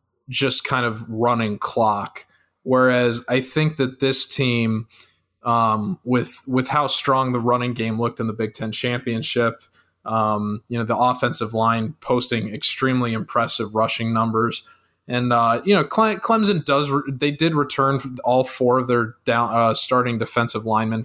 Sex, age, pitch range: male, 20-39, 115-130 Hz